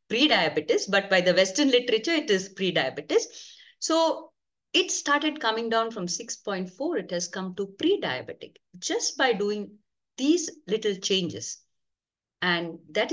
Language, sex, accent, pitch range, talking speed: English, female, Indian, 175-240 Hz, 135 wpm